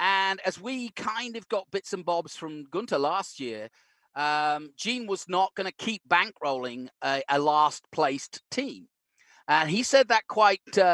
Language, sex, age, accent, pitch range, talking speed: English, male, 40-59, British, 160-230 Hz, 165 wpm